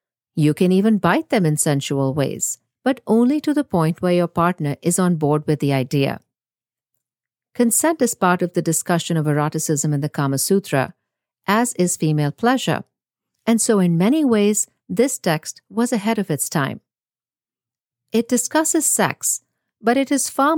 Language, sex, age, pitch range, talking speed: English, female, 50-69, 155-225 Hz, 165 wpm